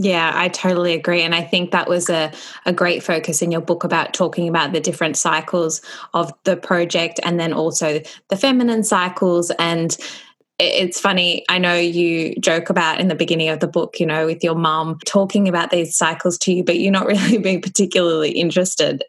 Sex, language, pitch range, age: female, English, 165-190 Hz, 20-39